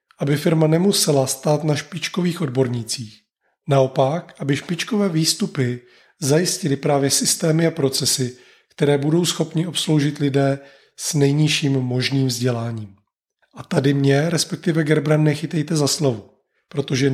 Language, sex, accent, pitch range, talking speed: Czech, male, native, 130-160 Hz, 120 wpm